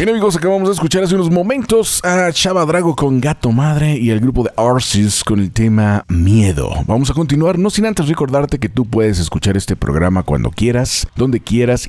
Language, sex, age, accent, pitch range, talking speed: Spanish, male, 40-59, Mexican, 105-145 Hz, 200 wpm